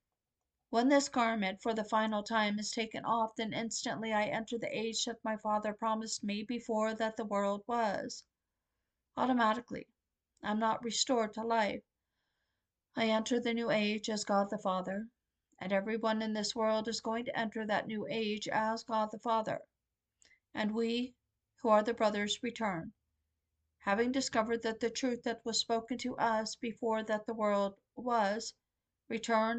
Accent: American